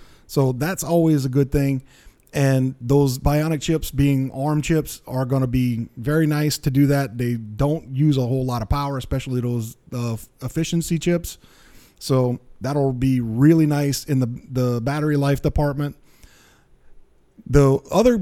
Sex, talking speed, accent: male, 160 wpm, American